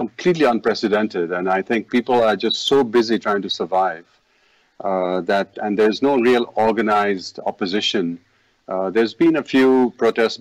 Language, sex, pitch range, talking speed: English, male, 95-120 Hz, 155 wpm